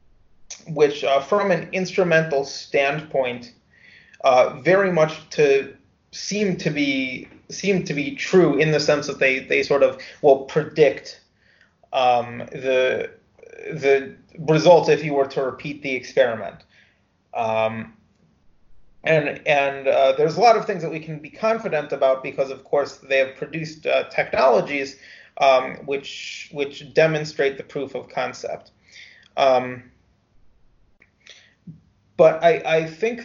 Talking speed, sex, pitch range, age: 135 wpm, male, 135-175 Hz, 30-49